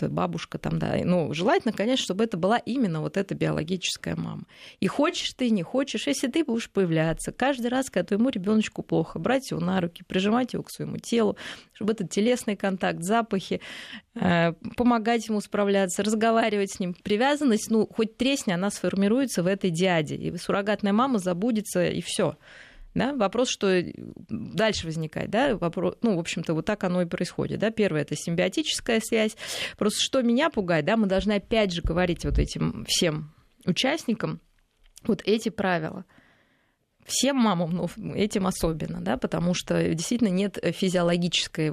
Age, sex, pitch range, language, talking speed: 20-39, female, 175-225 Hz, Russian, 160 wpm